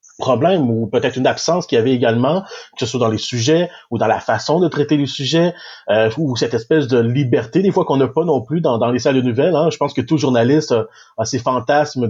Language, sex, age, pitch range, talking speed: French, male, 30-49, 115-150 Hz, 260 wpm